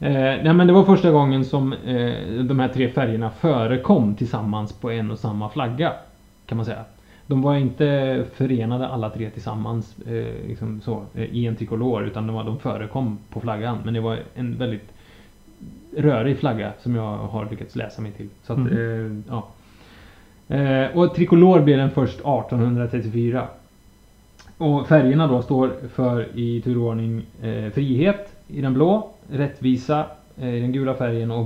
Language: Swedish